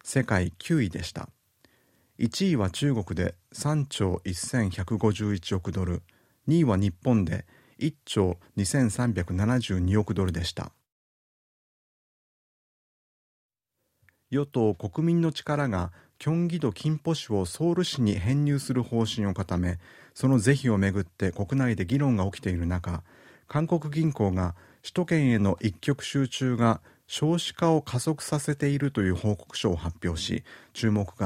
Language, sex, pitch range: Japanese, male, 95-135 Hz